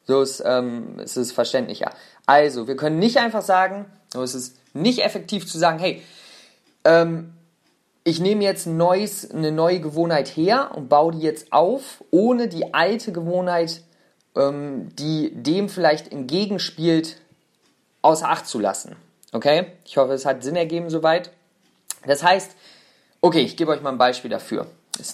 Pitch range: 140-185 Hz